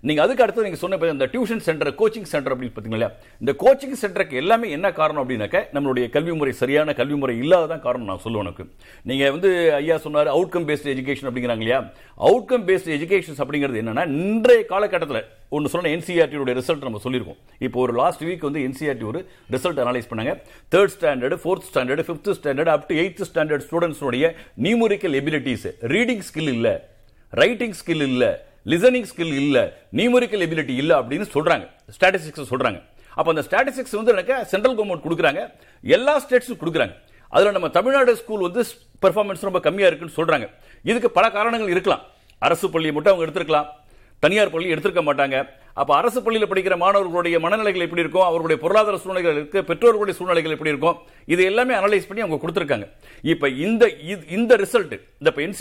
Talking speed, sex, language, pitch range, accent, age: 80 wpm, male, Tamil, 145-210 Hz, native, 50-69